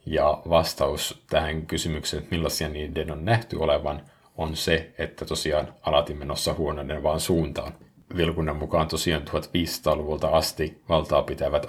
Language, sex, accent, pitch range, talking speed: Finnish, male, native, 75-85 Hz, 130 wpm